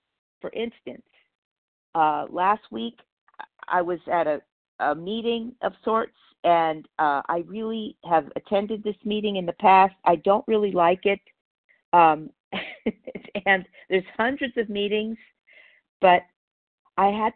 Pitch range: 185-245 Hz